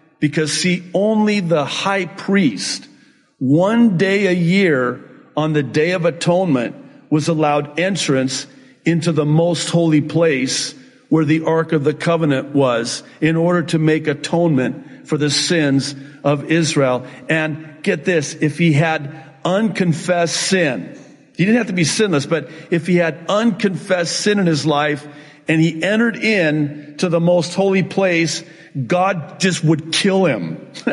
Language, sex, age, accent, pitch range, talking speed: English, male, 50-69, American, 155-200 Hz, 150 wpm